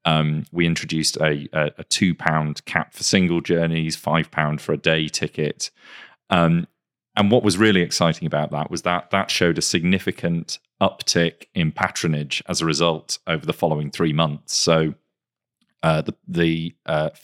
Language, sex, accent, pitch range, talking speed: English, male, British, 80-95 Hz, 165 wpm